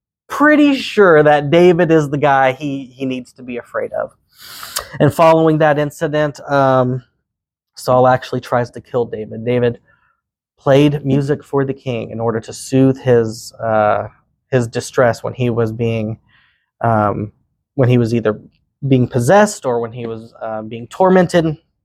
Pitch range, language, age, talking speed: 120-145 Hz, English, 20-39, 155 wpm